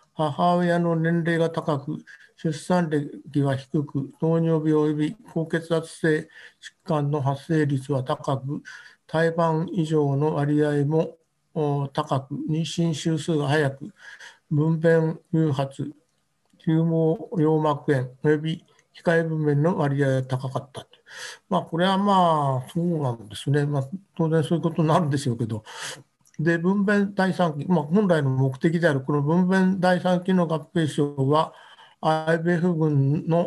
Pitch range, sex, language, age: 145-170 Hz, male, Japanese, 60-79